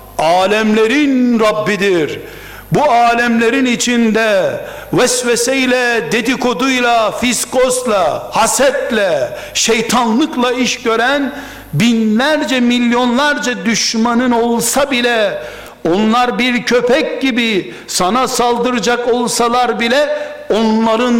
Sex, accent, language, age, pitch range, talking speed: male, native, Turkish, 60-79, 220-255 Hz, 75 wpm